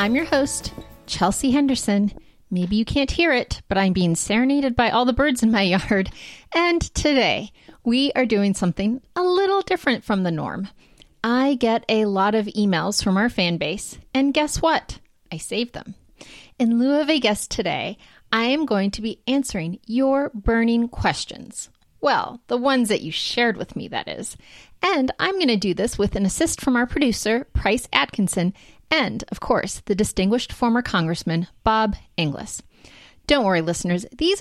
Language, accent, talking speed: English, American, 175 wpm